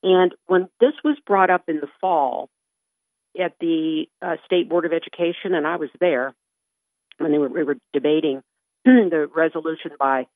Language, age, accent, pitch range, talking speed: English, 50-69, American, 150-195 Hz, 170 wpm